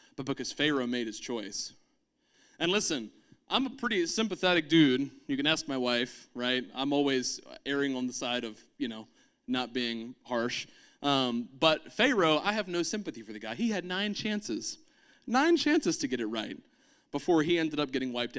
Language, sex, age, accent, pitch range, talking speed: English, male, 30-49, American, 140-215 Hz, 185 wpm